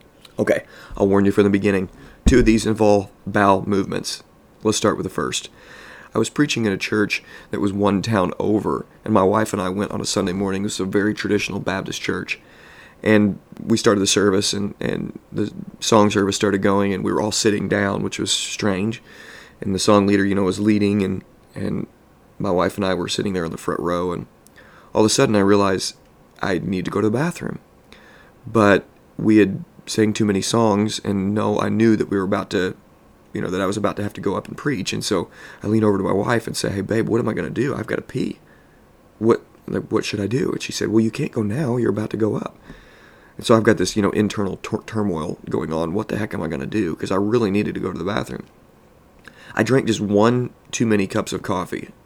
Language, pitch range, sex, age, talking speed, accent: English, 100-110 Hz, male, 30-49, 240 wpm, American